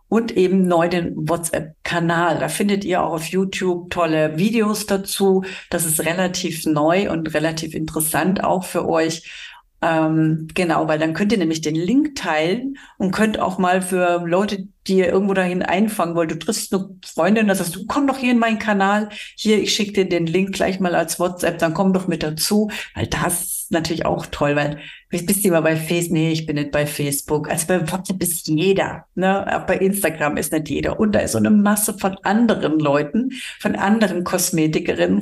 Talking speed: 205 wpm